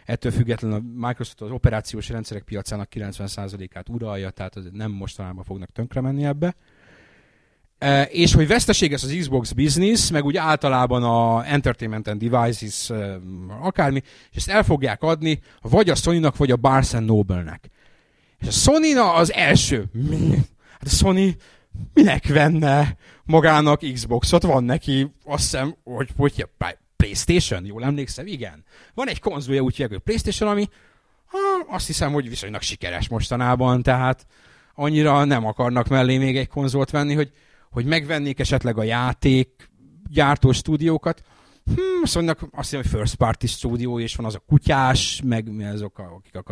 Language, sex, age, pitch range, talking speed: Hungarian, male, 30-49, 110-150 Hz, 155 wpm